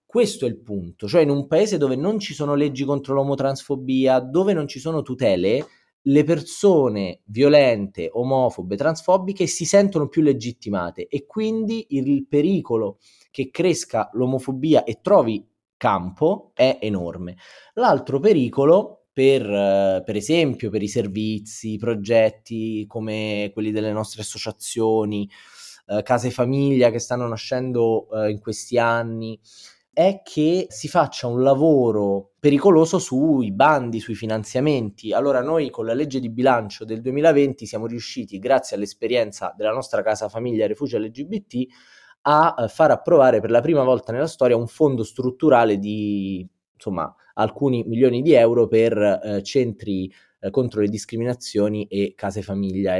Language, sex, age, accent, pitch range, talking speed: Italian, male, 20-39, native, 110-145 Hz, 140 wpm